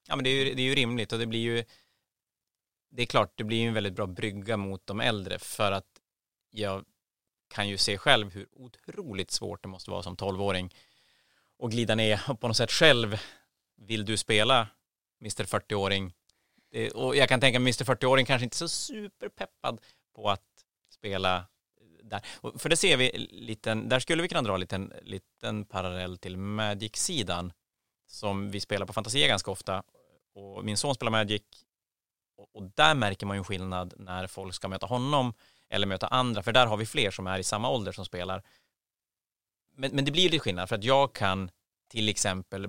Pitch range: 95-120 Hz